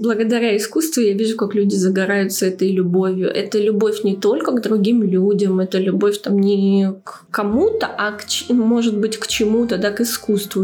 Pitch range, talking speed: 205-240 Hz, 180 wpm